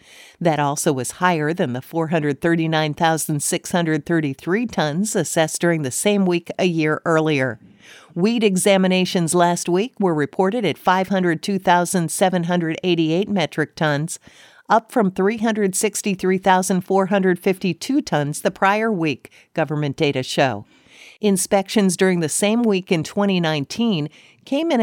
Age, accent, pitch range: 50-69, American, 160-195 Hz